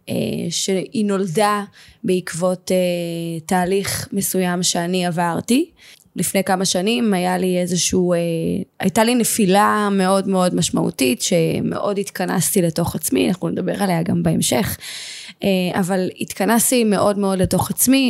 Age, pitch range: 20-39, 180-225 Hz